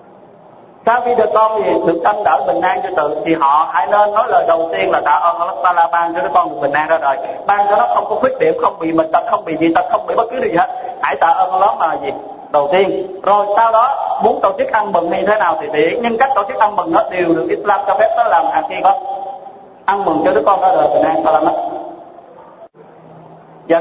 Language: Vietnamese